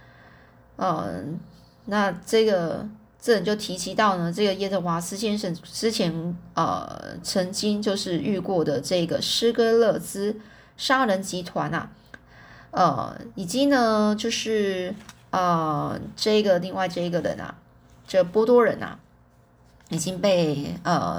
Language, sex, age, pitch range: Chinese, female, 20-39, 175-225 Hz